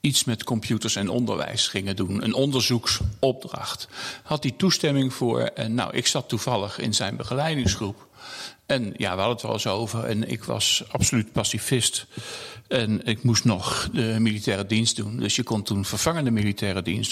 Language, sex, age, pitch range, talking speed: Dutch, male, 50-69, 110-135 Hz, 170 wpm